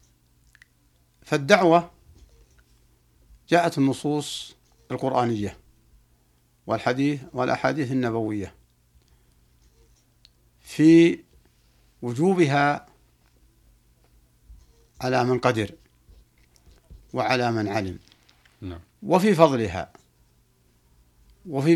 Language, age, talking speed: Arabic, 60-79, 50 wpm